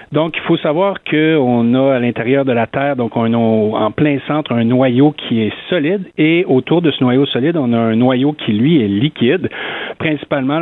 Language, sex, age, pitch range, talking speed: French, male, 50-69, 120-155 Hz, 210 wpm